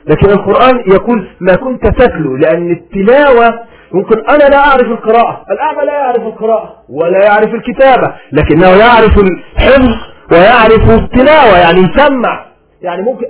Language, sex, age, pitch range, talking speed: Arabic, male, 40-59, 215-275 Hz, 130 wpm